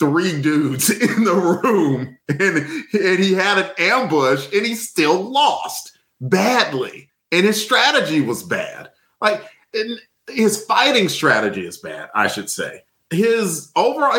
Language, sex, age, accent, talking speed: English, male, 40-59, American, 140 wpm